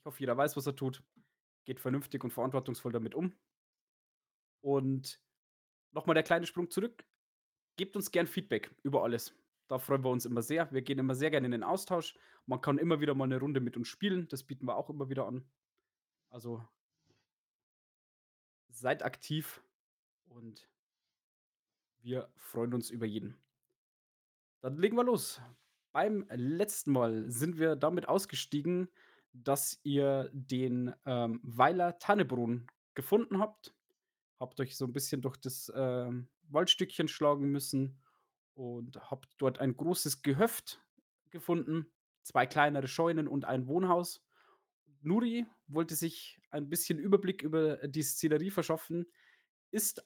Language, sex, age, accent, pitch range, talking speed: German, male, 20-39, German, 130-170 Hz, 145 wpm